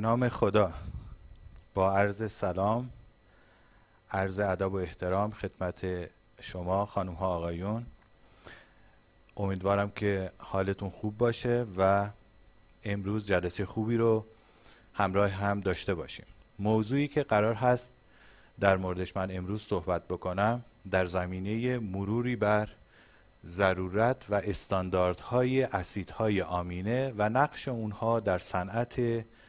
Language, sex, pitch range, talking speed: Persian, male, 95-120 Hz, 105 wpm